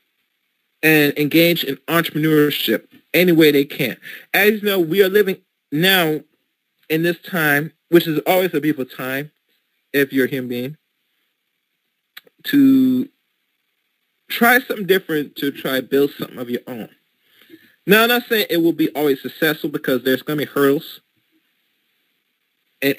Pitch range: 130-170 Hz